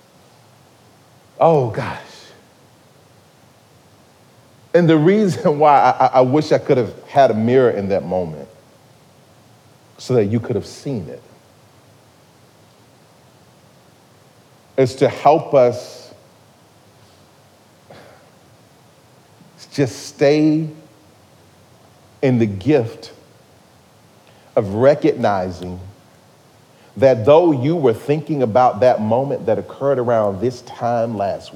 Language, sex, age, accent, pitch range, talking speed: English, male, 40-59, American, 120-155 Hz, 95 wpm